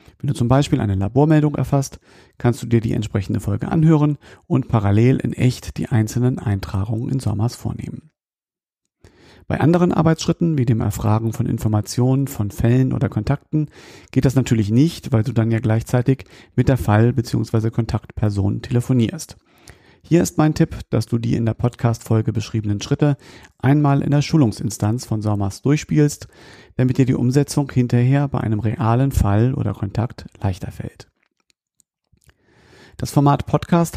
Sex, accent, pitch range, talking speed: male, German, 110-140 Hz, 150 wpm